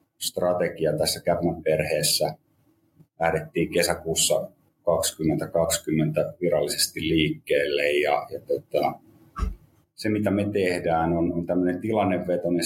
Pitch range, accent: 80-110 Hz, native